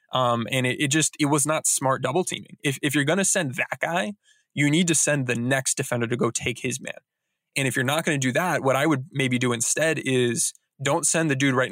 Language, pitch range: English, 125-150 Hz